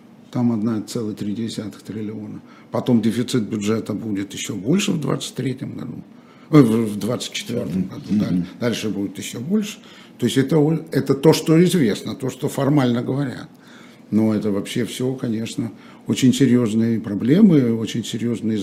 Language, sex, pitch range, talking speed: Russian, male, 105-140 Hz, 130 wpm